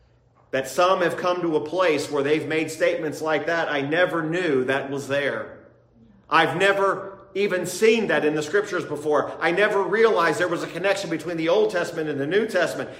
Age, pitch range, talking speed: 40-59, 135-185 Hz, 200 wpm